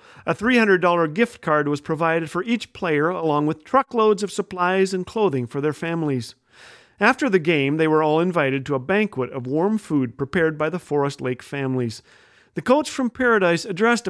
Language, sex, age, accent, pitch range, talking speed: English, male, 40-59, American, 145-195 Hz, 185 wpm